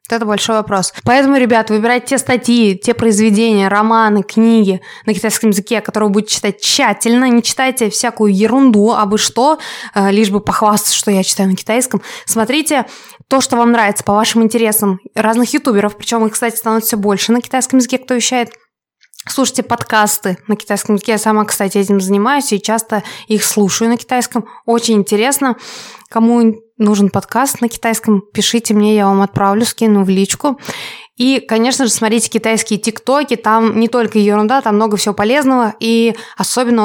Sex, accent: female, native